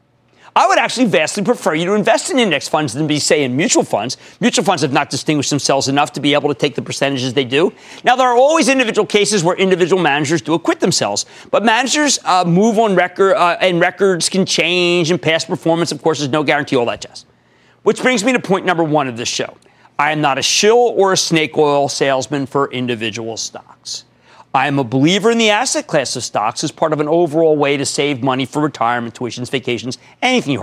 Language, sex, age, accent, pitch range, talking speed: English, male, 40-59, American, 145-210 Hz, 225 wpm